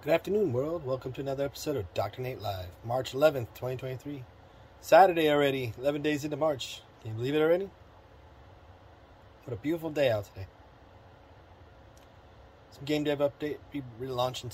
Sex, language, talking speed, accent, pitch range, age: male, English, 155 wpm, American, 100-120 Hz, 30-49